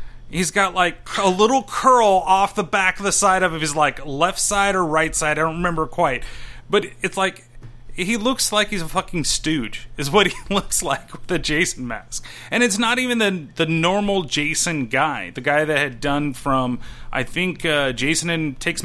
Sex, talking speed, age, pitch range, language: male, 200 wpm, 30-49, 130-175 Hz, English